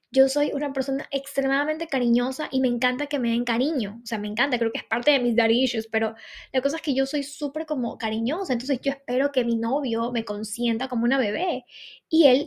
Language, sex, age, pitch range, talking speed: Spanish, female, 10-29, 240-290 Hz, 225 wpm